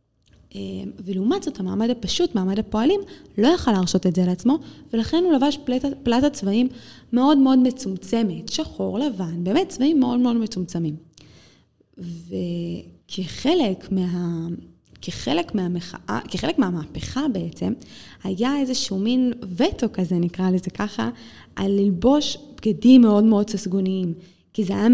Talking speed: 120 wpm